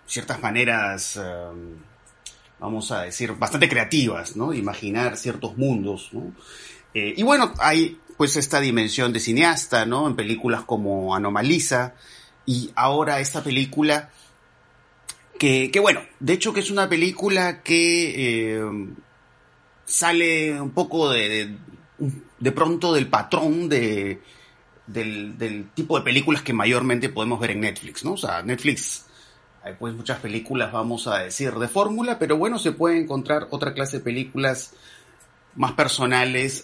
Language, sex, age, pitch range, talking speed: Spanish, male, 30-49, 110-150 Hz, 140 wpm